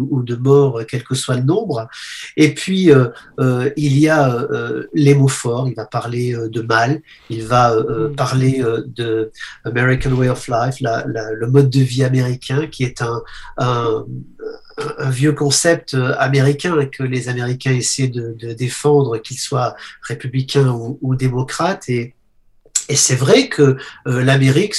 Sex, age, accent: male, 40-59, French